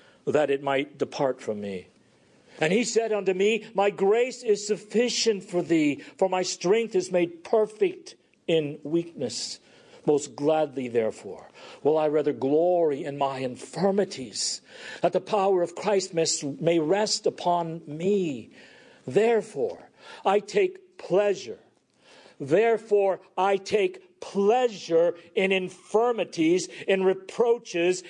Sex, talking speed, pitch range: male, 120 wpm, 165-225 Hz